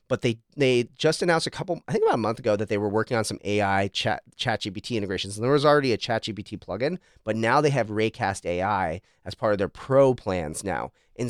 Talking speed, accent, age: 235 wpm, American, 30-49